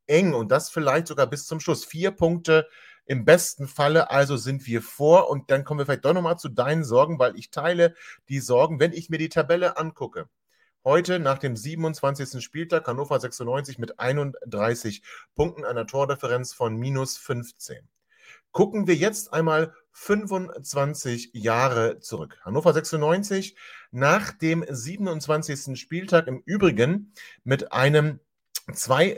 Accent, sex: German, male